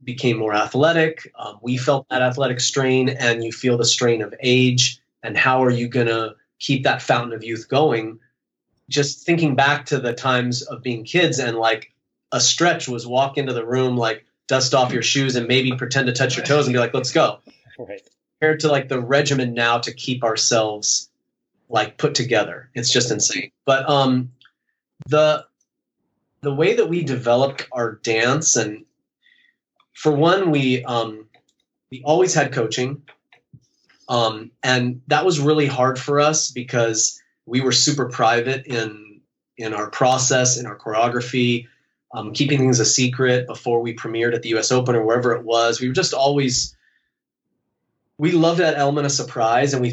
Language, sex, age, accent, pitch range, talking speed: English, male, 30-49, American, 120-140 Hz, 175 wpm